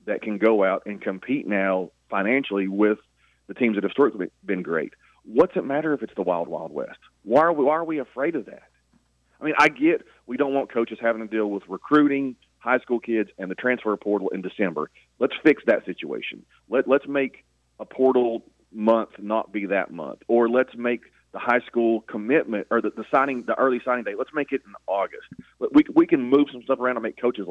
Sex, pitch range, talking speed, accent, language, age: male, 100-125 Hz, 220 wpm, American, English, 40-59